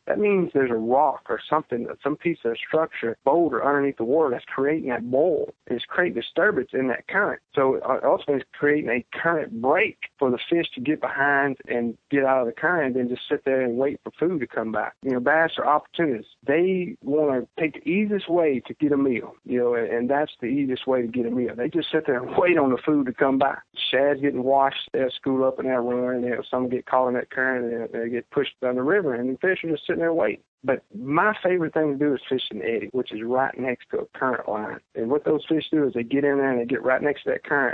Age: 50-69